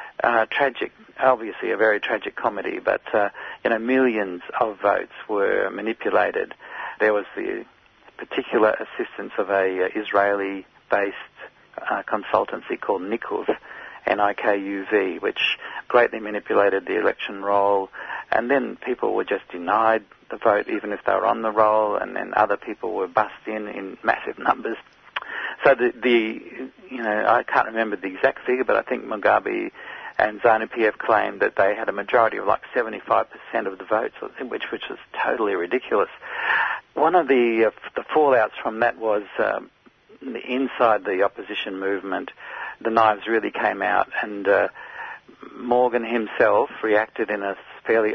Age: 50-69